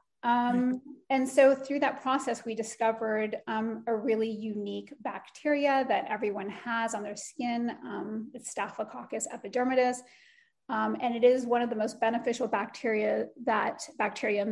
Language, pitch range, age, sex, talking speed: English, 220-265 Hz, 30-49, female, 145 wpm